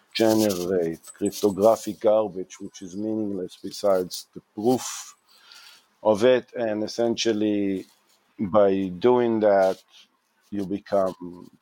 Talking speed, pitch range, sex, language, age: 95 wpm, 95-110 Hz, male, English, 50-69